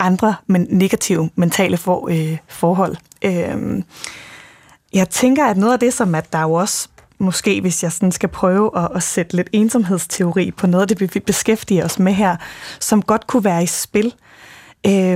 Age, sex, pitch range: 20-39, female, 180-215 Hz